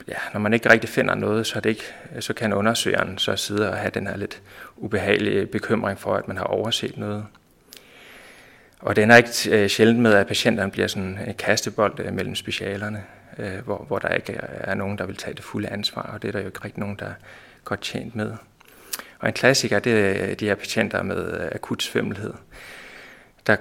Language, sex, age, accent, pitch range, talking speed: Danish, male, 30-49, native, 100-115 Hz, 200 wpm